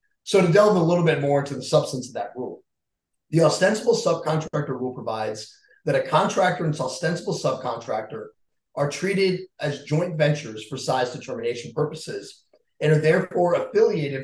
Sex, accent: male, American